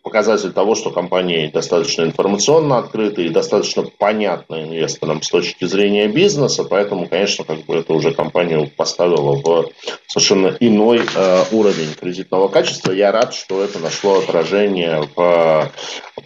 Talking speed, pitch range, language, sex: 140 wpm, 85-110 Hz, Russian, male